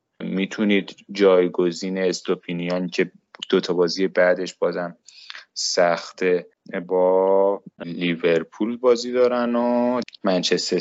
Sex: male